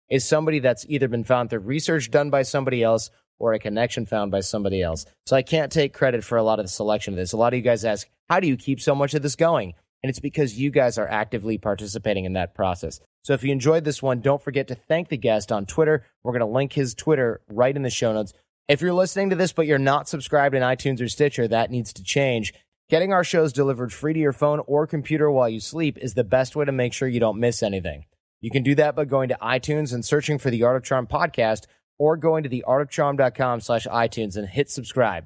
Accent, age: American, 30-49